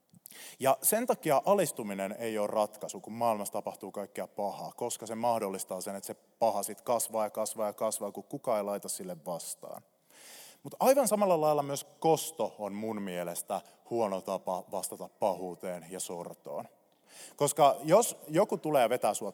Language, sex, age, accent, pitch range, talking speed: Finnish, male, 30-49, native, 105-145 Hz, 165 wpm